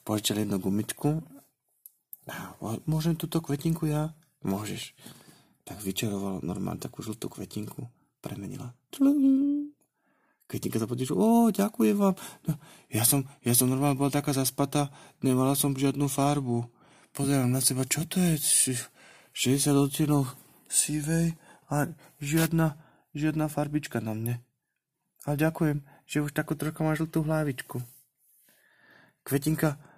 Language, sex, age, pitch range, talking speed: Slovak, male, 30-49, 130-155 Hz, 120 wpm